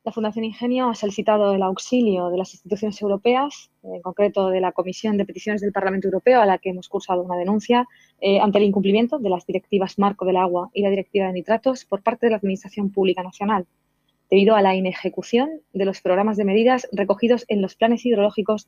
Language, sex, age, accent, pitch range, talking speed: Spanish, female, 20-39, Spanish, 190-225 Hz, 205 wpm